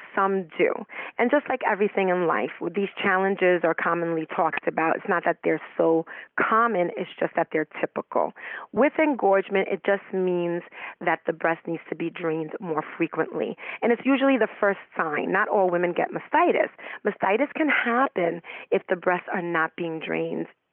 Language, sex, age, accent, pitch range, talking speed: English, female, 40-59, American, 170-215 Hz, 175 wpm